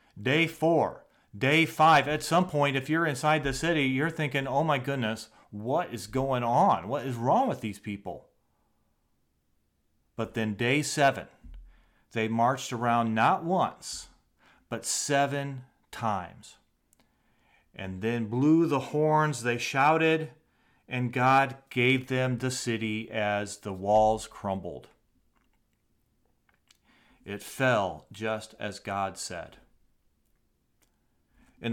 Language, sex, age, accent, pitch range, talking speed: English, male, 40-59, American, 110-140 Hz, 120 wpm